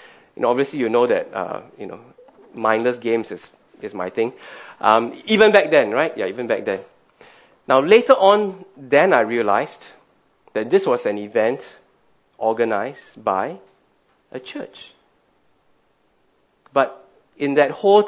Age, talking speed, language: 20-39, 145 wpm, English